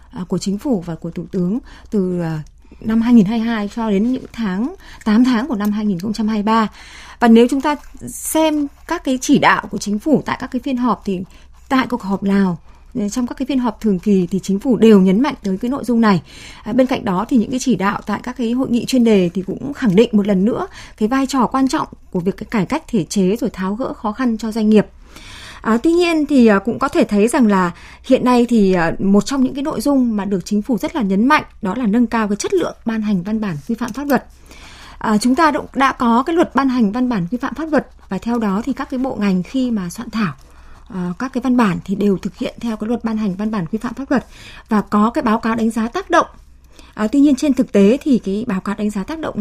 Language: Vietnamese